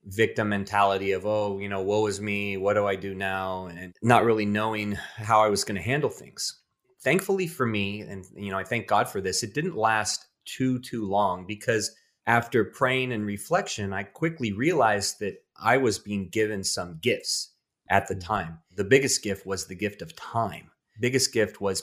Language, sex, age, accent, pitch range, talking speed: English, male, 30-49, American, 100-115 Hz, 195 wpm